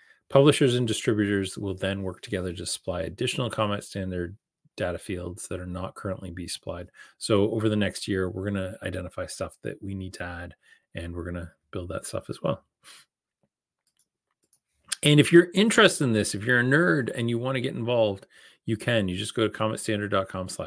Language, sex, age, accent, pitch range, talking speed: English, male, 30-49, American, 90-125 Hz, 185 wpm